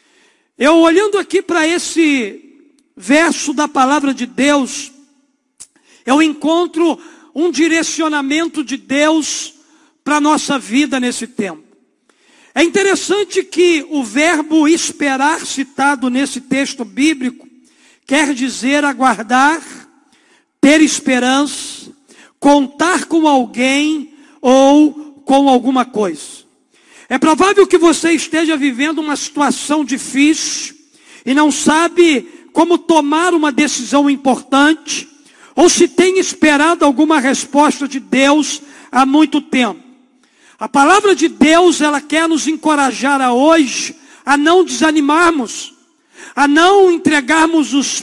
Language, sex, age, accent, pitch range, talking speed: Portuguese, male, 50-69, Brazilian, 280-325 Hz, 110 wpm